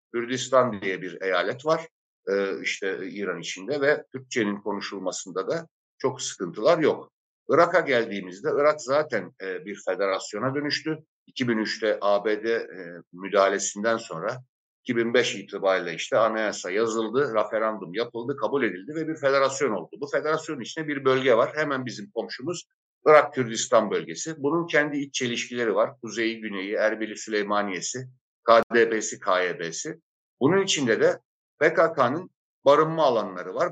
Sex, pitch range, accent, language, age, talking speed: male, 110-150 Hz, native, Turkish, 60-79, 120 wpm